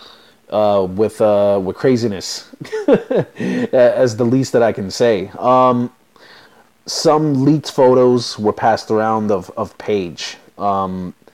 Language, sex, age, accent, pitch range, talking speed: English, male, 30-49, American, 105-130 Hz, 120 wpm